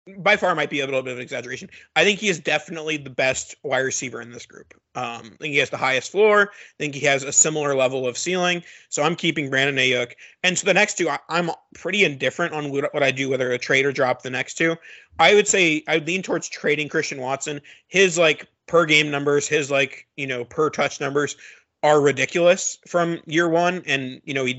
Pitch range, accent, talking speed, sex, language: 135-160 Hz, American, 230 wpm, male, English